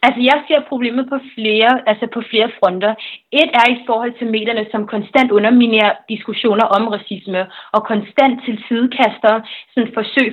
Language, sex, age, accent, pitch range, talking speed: Danish, female, 30-49, native, 215-250 Hz, 155 wpm